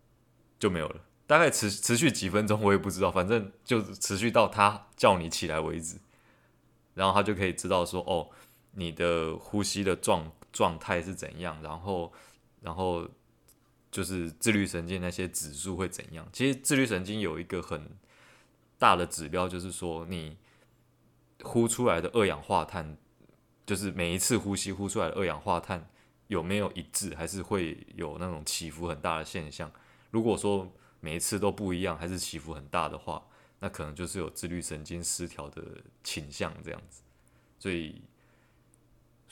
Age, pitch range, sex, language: 20-39, 85-105 Hz, male, Chinese